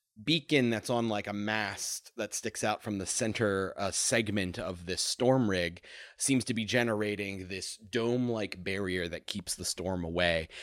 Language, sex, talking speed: English, male, 175 wpm